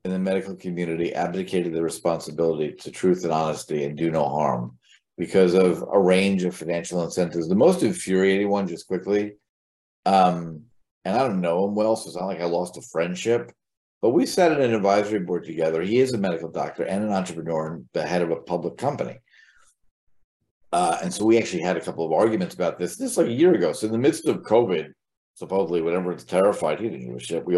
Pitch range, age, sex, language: 90-150 Hz, 50-69, male, English